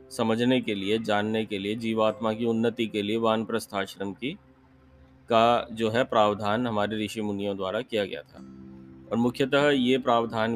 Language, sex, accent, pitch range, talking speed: Hindi, male, native, 105-125 Hz, 165 wpm